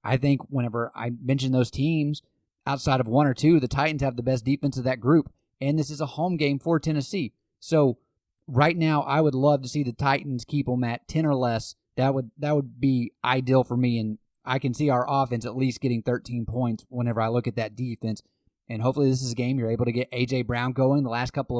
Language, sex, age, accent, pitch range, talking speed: English, male, 30-49, American, 120-145 Hz, 240 wpm